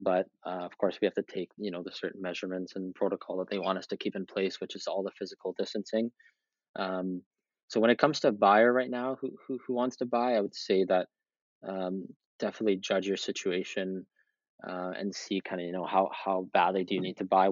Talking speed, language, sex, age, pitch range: 235 wpm, English, male, 20-39, 95-105 Hz